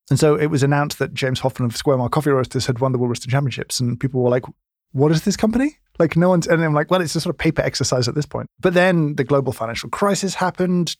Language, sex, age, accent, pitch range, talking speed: English, male, 20-39, British, 125-150 Hz, 275 wpm